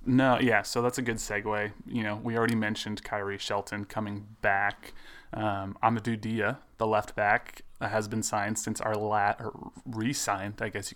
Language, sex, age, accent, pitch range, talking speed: English, male, 20-39, American, 110-120 Hz, 175 wpm